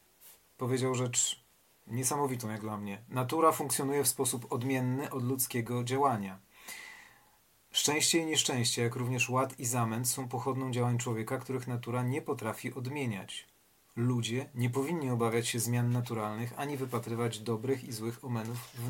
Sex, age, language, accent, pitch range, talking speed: male, 40-59, Polish, native, 115-130 Hz, 145 wpm